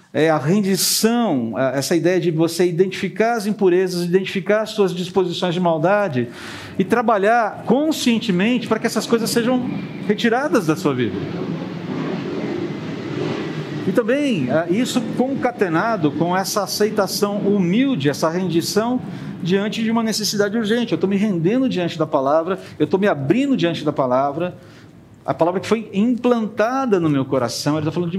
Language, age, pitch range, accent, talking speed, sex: Portuguese, 50-69, 165-225 Hz, Brazilian, 145 wpm, male